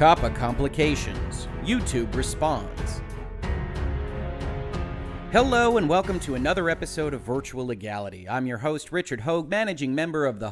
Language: English